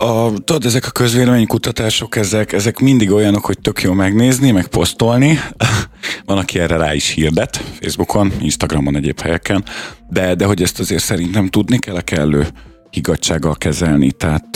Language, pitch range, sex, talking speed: Hungarian, 80-105 Hz, male, 155 wpm